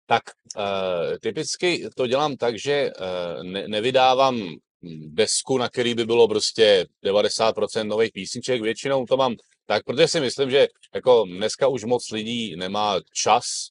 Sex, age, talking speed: male, 30-49, 150 wpm